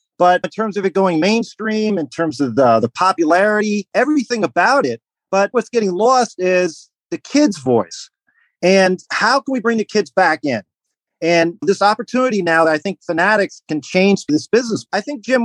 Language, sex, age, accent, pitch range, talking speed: English, male, 40-59, American, 150-220 Hz, 185 wpm